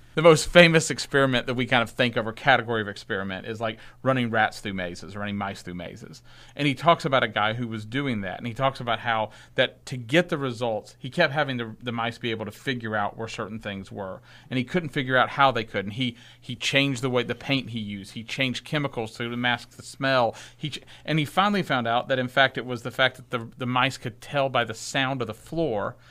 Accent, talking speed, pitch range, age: American, 255 wpm, 115-155 Hz, 40-59